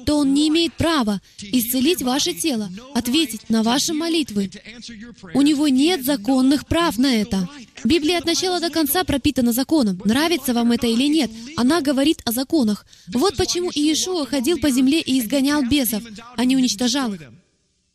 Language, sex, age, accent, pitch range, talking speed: Russian, female, 20-39, native, 230-315 Hz, 160 wpm